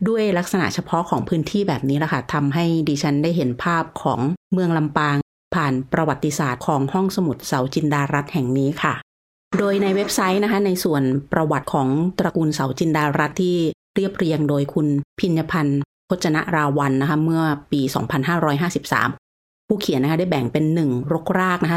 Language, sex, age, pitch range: Thai, female, 30-49, 145-180 Hz